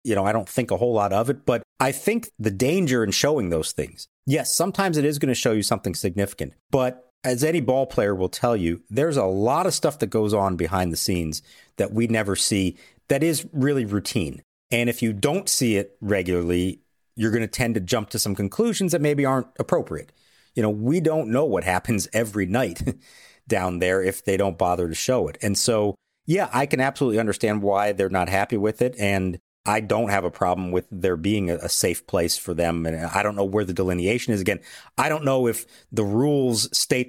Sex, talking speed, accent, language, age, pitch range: male, 220 wpm, American, English, 40-59, 95-135 Hz